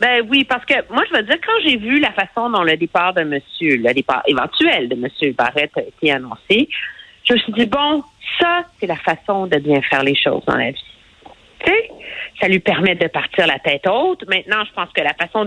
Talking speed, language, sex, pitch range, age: 235 wpm, French, female, 175-245 Hz, 50-69